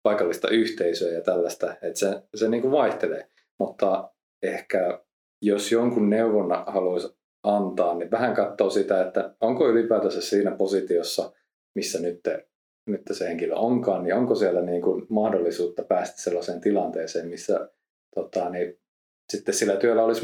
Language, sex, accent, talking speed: Finnish, male, native, 145 wpm